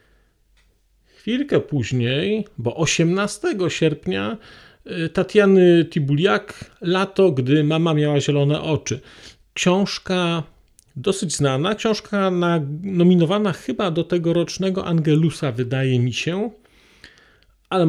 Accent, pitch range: native, 150-190 Hz